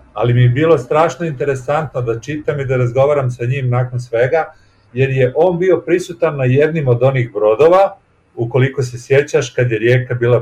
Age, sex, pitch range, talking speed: 40-59, male, 120-145 Hz, 185 wpm